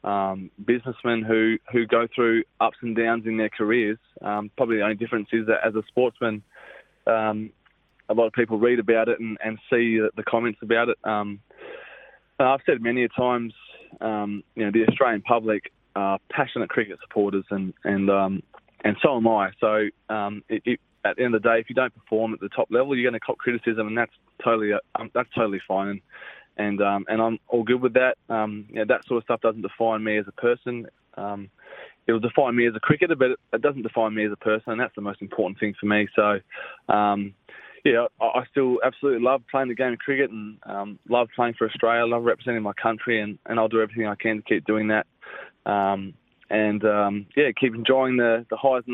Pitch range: 105-120 Hz